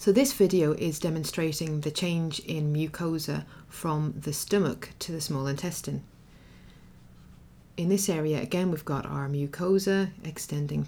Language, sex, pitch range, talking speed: English, female, 140-170 Hz, 140 wpm